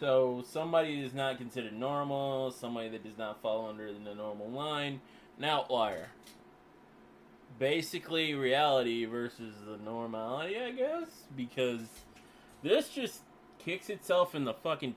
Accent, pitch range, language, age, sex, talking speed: American, 115-160 Hz, English, 20-39, male, 130 wpm